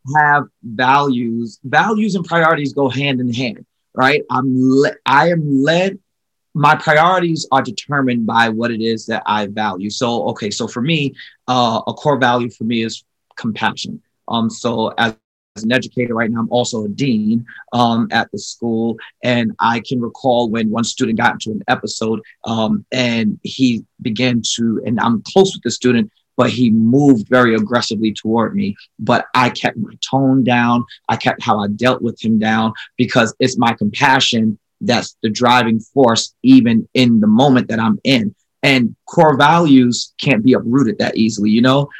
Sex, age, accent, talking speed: male, 30-49, American, 175 wpm